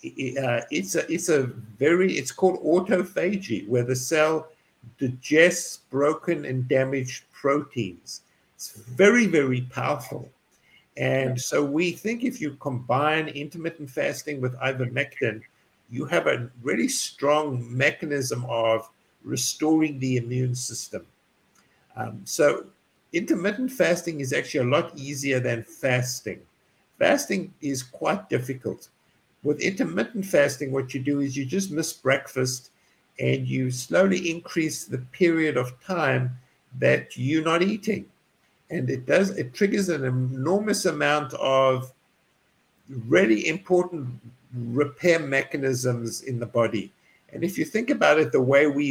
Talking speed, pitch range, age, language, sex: 130 wpm, 125-165 Hz, 60-79, English, male